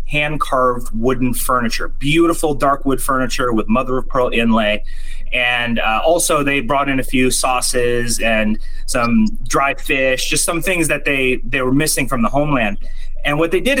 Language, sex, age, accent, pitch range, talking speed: English, male, 30-49, American, 125-170 Hz, 180 wpm